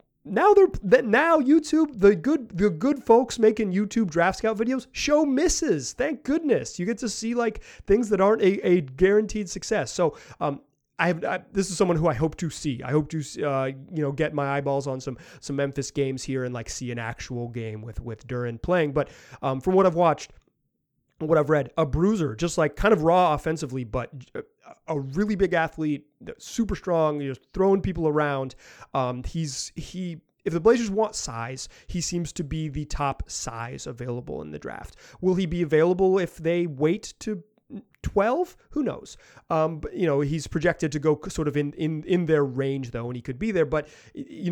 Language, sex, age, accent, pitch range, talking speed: English, male, 30-49, American, 140-200 Hz, 200 wpm